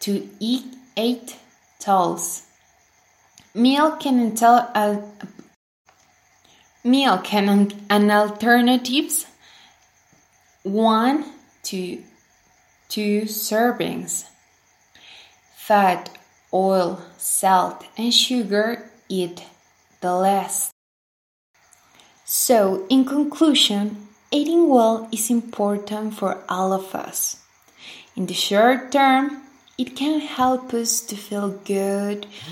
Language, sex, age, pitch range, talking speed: English, female, 20-39, 200-255 Hz, 80 wpm